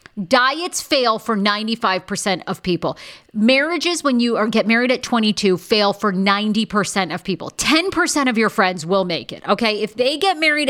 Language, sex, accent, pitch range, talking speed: English, female, American, 190-270 Hz, 170 wpm